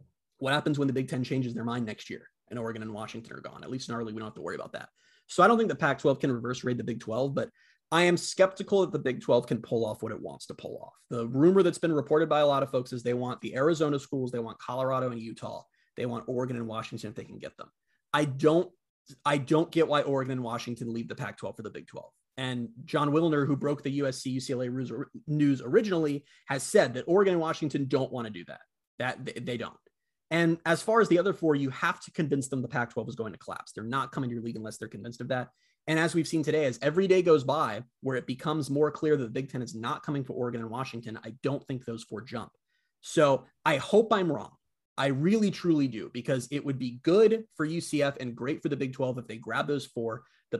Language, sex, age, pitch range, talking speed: English, male, 30-49, 125-165 Hz, 255 wpm